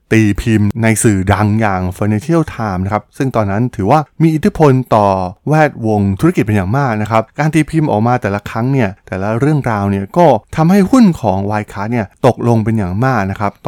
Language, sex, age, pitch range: Thai, male, 20-39, 100-130 Hz